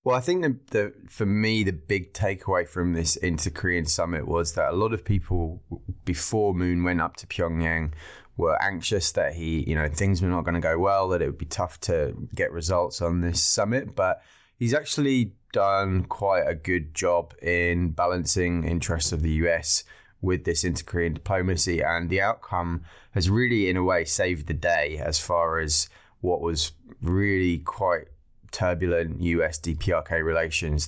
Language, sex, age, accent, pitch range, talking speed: English, male, 20-39, British, 80-95 Hz, 175 wpm